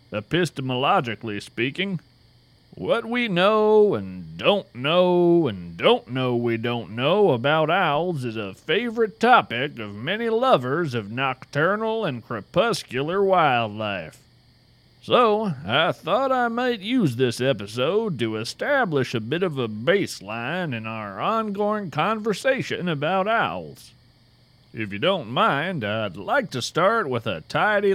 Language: English